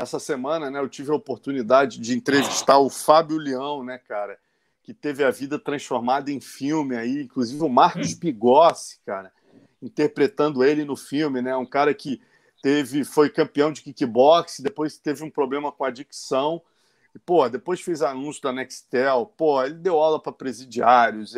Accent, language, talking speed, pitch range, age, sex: Brazilian, Portuguese, 170 wpm, 130-165 Hz, 40-59, male